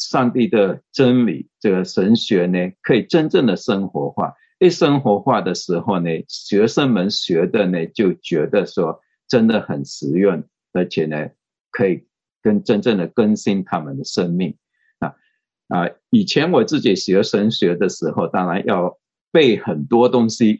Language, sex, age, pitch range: Chinese, male, 50-69, 95-130 Hz